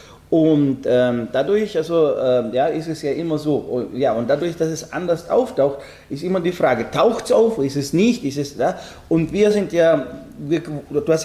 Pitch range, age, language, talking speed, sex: 135-175 Hz, 40-59, German, 210 wpm, male